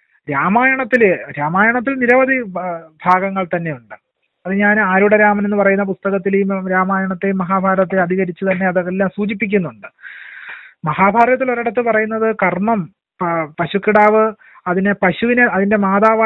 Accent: Indian